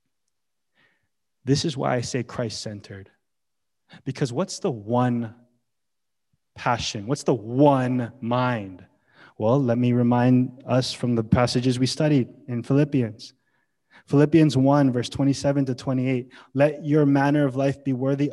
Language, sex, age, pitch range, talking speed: English, male, 20-39, 130-185 Hz, 130 wpm